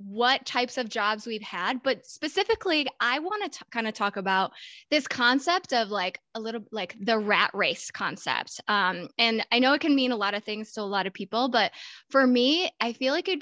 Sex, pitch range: female, 215-280 Hz